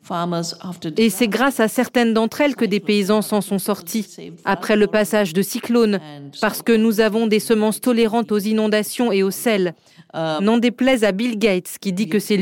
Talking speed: 190 wpm